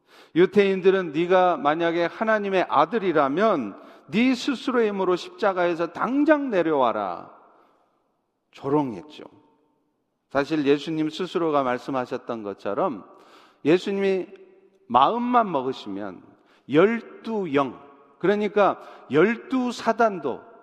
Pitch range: 150-220 Hz